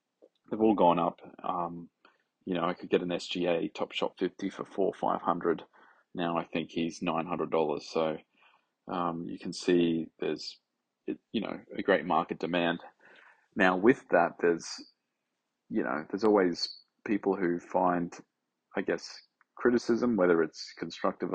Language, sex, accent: English, male, Australian